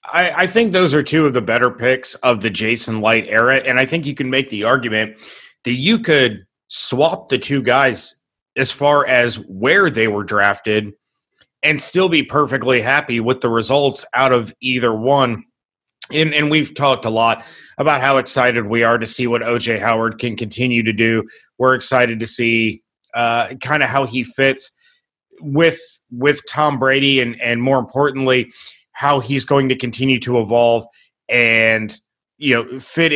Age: 30-49